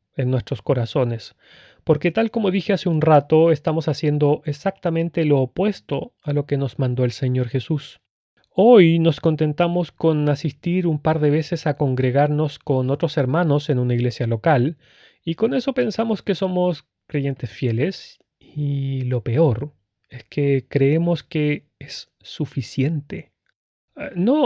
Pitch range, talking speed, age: 130-165 Hz, 145 wpm, 30-49